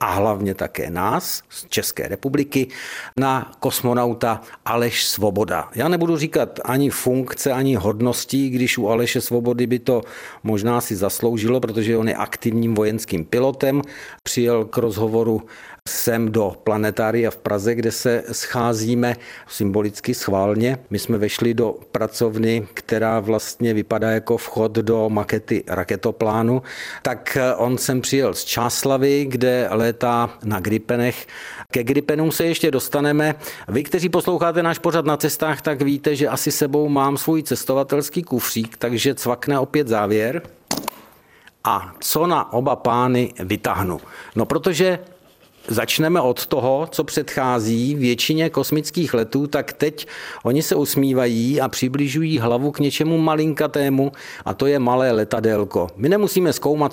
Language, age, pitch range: Czech, 50-69, 115-145 Hz